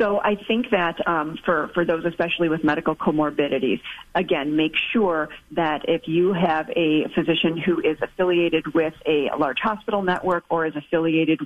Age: 40-59